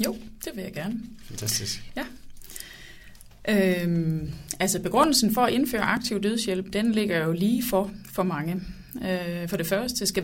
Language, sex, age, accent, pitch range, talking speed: Danish, female, 30-49, native, 180-220 Hz, 135 wpm